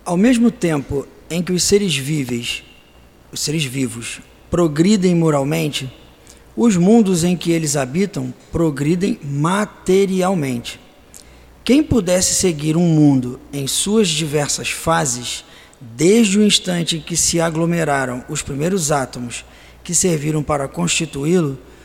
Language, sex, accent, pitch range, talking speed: Portuguese, male, Brazilian, 145-200 Hz, 115 wpm